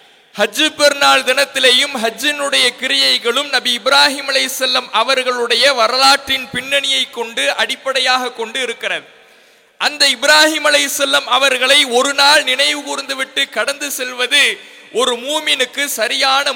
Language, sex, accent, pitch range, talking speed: English, male, Indian, 250-290 Hz, 130 wpm